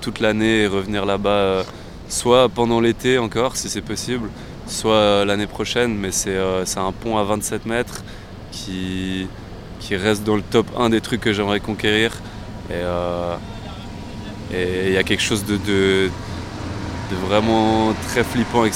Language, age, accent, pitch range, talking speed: French, 20-39, French, 95-110 Hz, 165 wpm